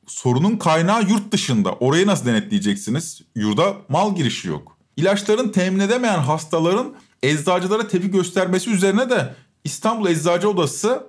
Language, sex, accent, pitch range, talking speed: Turkish, male, native, 145-205 Hz, 125 wpm